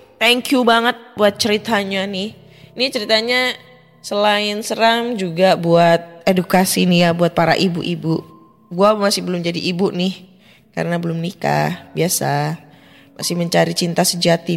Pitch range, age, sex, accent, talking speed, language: 170-215 Hz, 10-29, female, native, 130 wpm, Indonesian